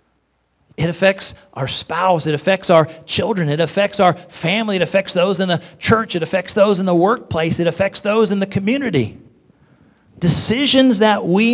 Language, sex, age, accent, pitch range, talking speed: English, male, 40-59, American, 155-200 Hz, 170 wpm